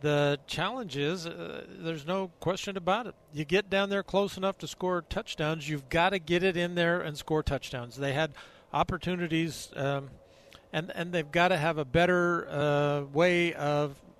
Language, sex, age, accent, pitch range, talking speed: English, male, 50-69, American, 145-175 Hz, 180 wpm